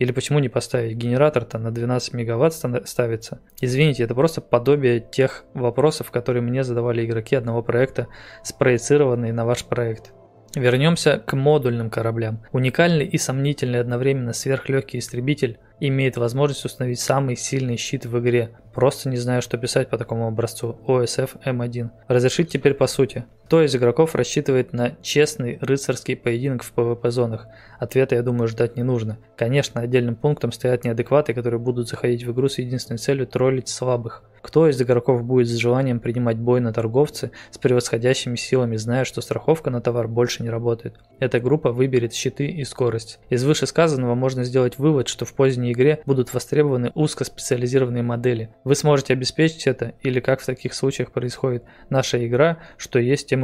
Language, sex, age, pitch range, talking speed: Russian, male, 20-39, 120-135 Hz, 165 wpm